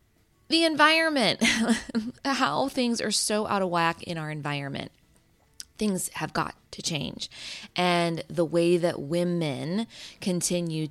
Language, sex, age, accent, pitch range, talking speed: English, female, 20-39, American, 160-205 Hz, 125 wpm